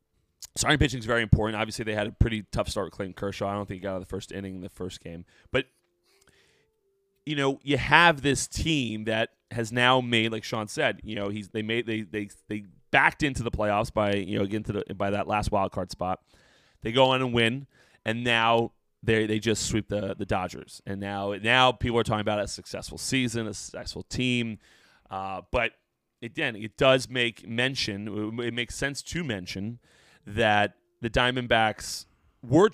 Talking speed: 200 wpm